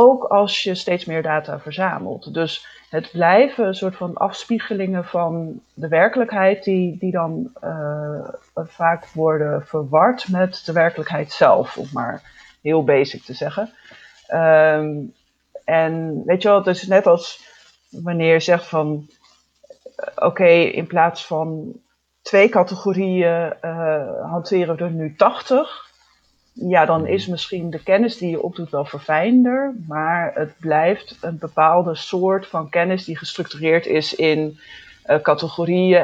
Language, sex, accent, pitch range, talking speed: Dutch, female, Dutch, 160-195 Hz, 140 wpm